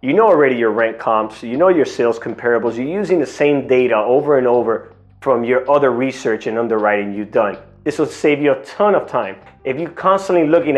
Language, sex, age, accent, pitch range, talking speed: English, male, 30-49, American, 130-170 Hz, 215 wpm